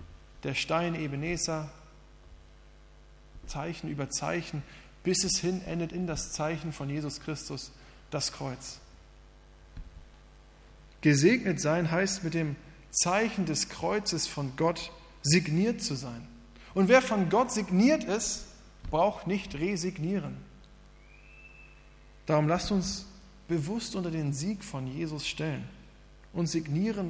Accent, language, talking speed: German, German, 115 wpm